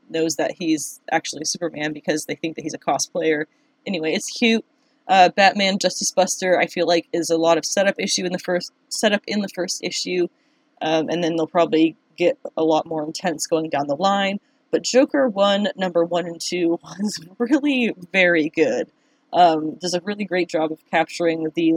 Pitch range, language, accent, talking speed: 160-205 Hz, English, American, 195 wpm